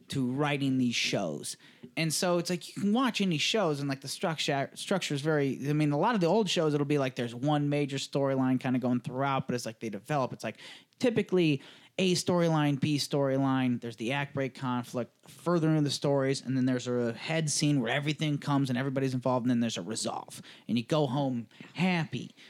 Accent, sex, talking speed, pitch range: American, male, 220 wpm, 140-175 Hz